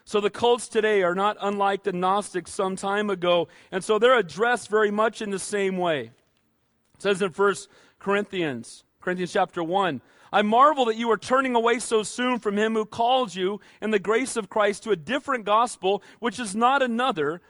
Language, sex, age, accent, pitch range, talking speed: English, male, 40-59, American, 200-245 Hz, 195 wpm